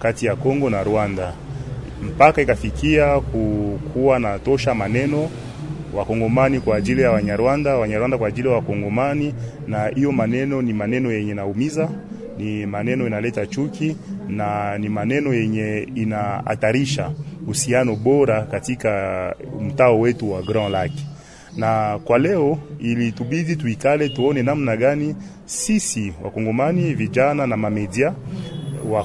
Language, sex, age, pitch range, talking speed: French, male, 30-49, 110-145 Hz, 120 wpm